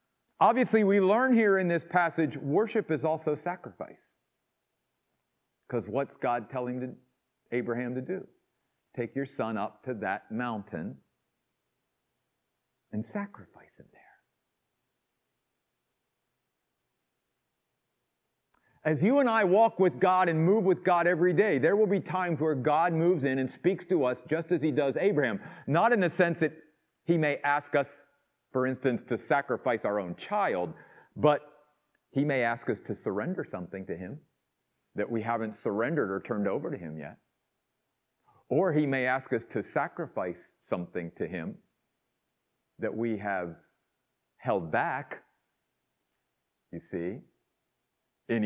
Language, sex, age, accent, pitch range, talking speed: English, male, 50-69, American, 115-175 Hz, 140 wpm